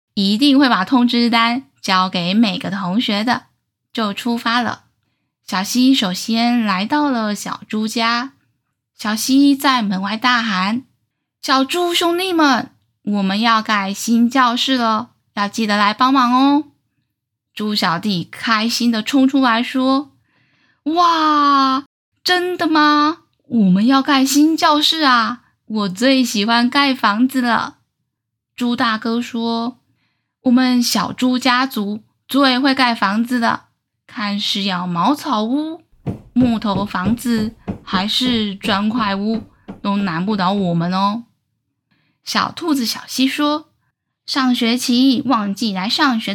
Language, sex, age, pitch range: Chinese, female, 10-29, 205-260 Hz